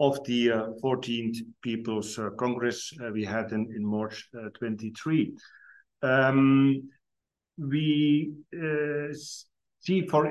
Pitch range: 115-140 Hz